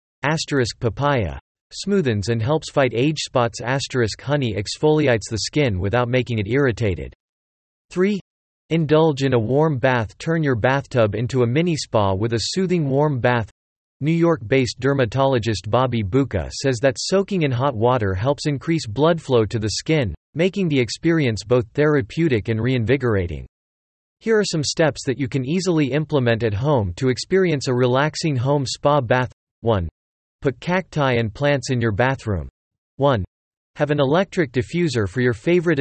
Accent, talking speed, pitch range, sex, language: American, 160 wpm, 115-150 Hz, male, English